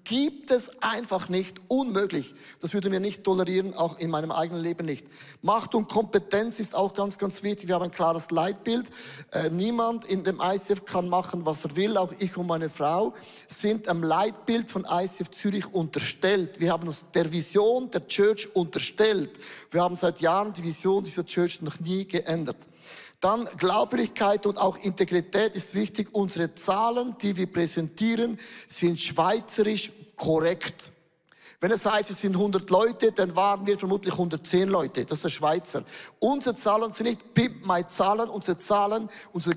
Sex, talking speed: male, 170 wpm